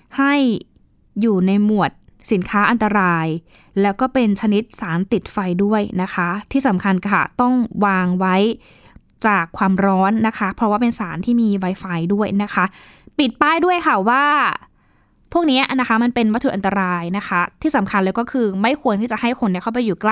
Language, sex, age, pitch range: Thai, female, 20-39, 200-260 Hz